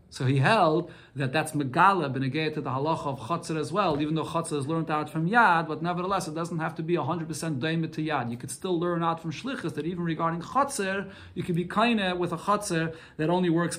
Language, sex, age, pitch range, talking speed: English, male, 40-59, 145-185 Hz, 240 wpm